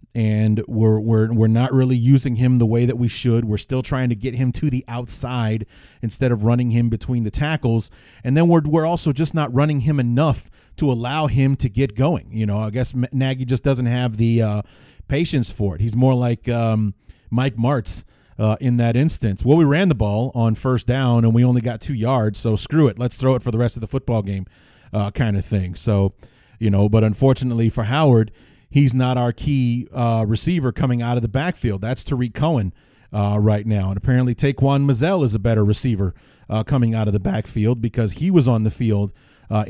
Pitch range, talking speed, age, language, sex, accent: 110-135 Hz, 215 wpm, 30-49, English, male, American